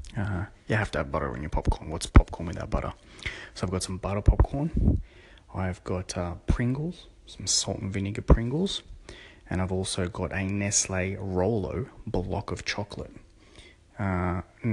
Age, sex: 20-39, male